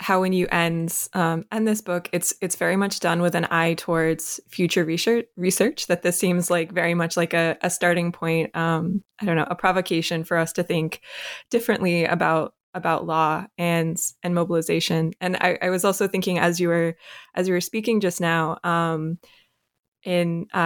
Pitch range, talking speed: 165-185 Hz, 190 wpm